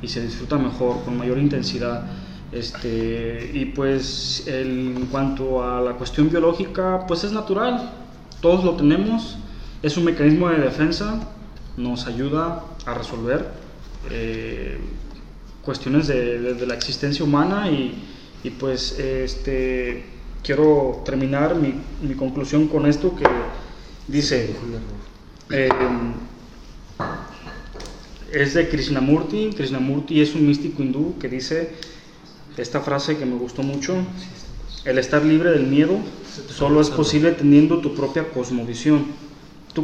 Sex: male